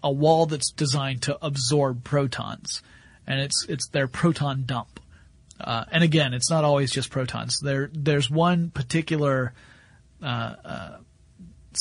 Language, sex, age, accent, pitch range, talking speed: English, male, 40-59, American, 120-150 Hz, 130 wpm